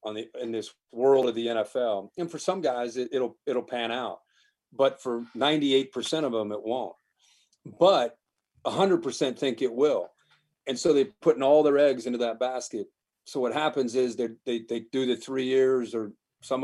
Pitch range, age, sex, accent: 115-150 Hz, 40-59, male, American